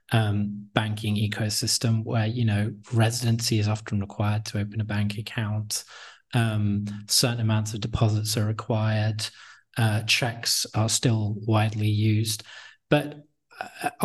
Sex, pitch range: male, 105-125 Hz